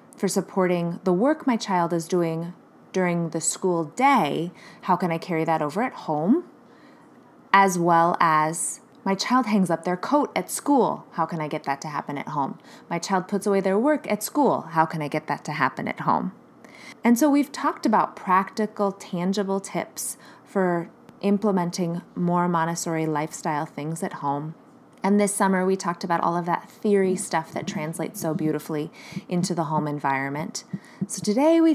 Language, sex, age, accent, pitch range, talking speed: English, female, 20-39, American, 170-220 Hz, 180 wpm